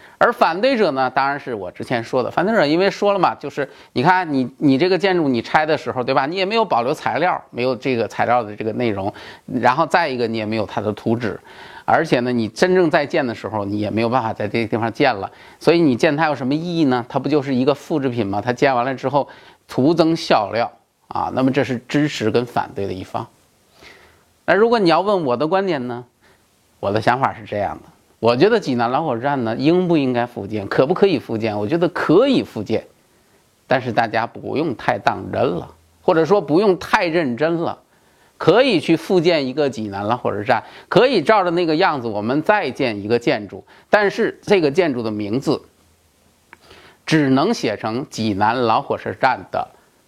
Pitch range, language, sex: 115-160 Hz, Chinese, male